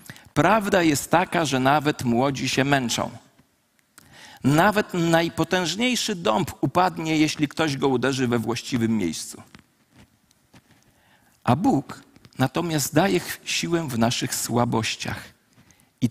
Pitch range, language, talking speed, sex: 130-180 Hz, Polish, 105 wpm, male